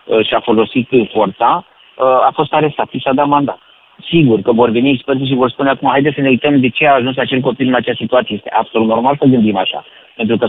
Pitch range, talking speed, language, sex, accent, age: 115-140 Hz, 225 wpm, Romanian, male, native, 30-49